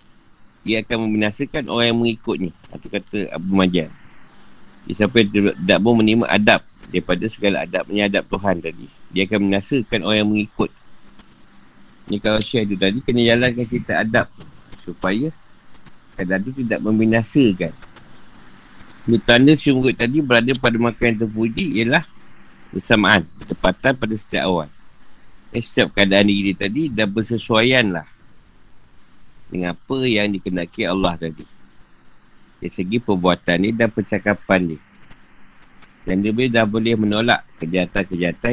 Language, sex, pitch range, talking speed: Malay, male, 90-115 Hz, 130 wpm